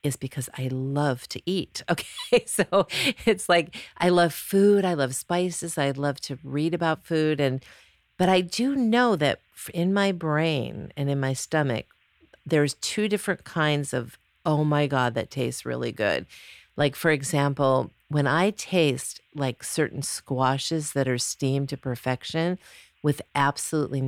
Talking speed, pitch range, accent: 155 wpm, 130-170 Hz, American